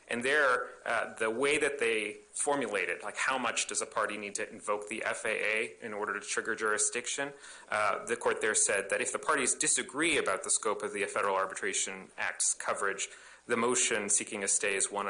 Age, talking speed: 30-49, 200 wpm